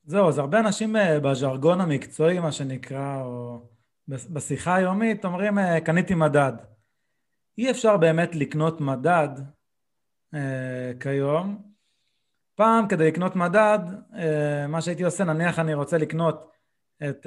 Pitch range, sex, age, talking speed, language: 140-195 Hz, male, 20-39, 120 wpm, Hebrew